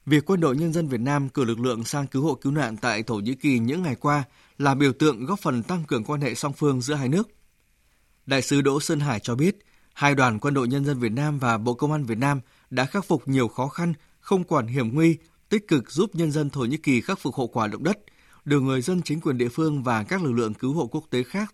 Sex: male